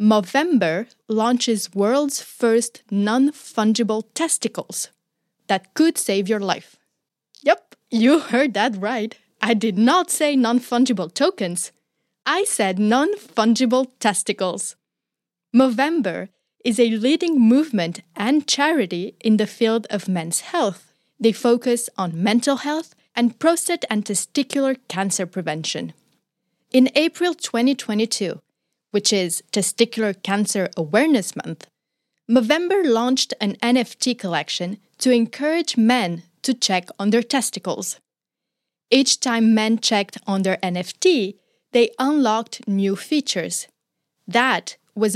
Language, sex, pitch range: English, female, 205-265 Hz